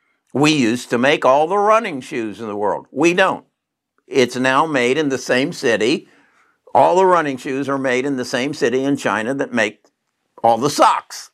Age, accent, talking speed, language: 60-79, American, 195 wpm, English